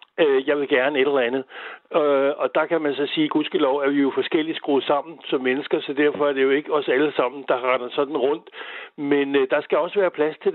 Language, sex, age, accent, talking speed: Danish, male, 60-79, native, 230 wpm